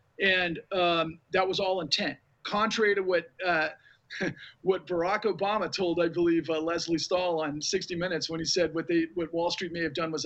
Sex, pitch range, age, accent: male, 155-200 Hz, 40-59, American